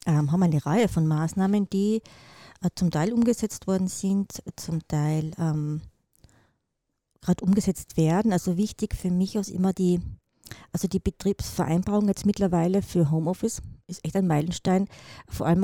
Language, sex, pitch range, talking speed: German, female, 165-195 Hz, 140 wpm